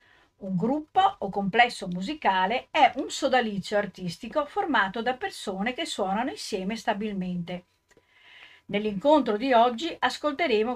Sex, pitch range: female, 195-270 Hz